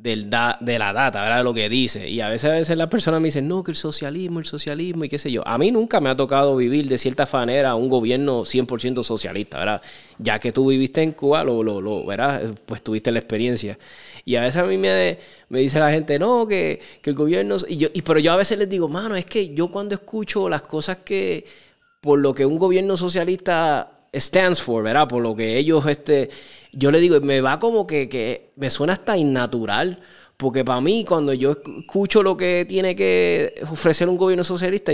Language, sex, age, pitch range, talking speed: Spanish, male, 20-39, 130-175 Hz, 225 wpm